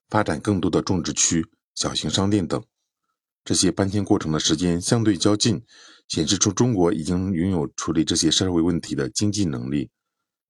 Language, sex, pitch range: Chinese, male, 80-105 Hz